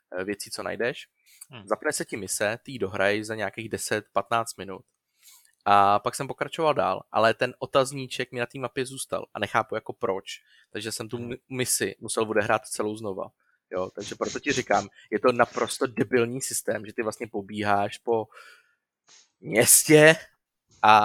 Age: 20-39